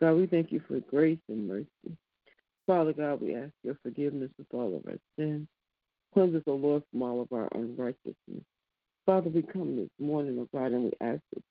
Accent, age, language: American, 60-79, English